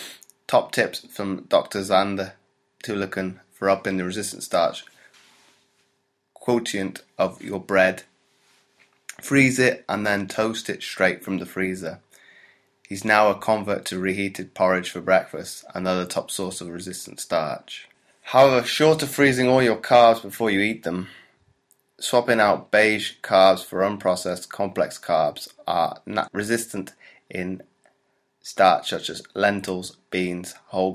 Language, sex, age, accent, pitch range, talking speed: English, male, 20-39, British, 90-105 Hz, 135 wpm